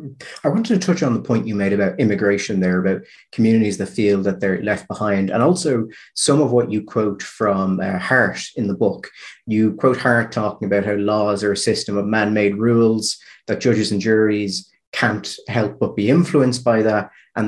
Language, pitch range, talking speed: English, 100-125 Hz, 200 wpm